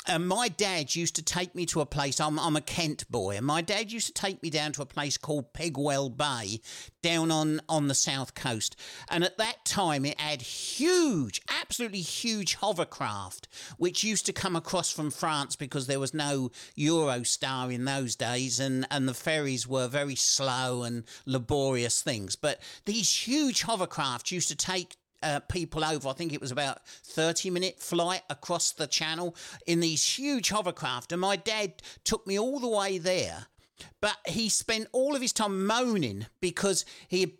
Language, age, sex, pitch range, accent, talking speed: English, 50-69, male, 140-195 Hz, British, 185 wpm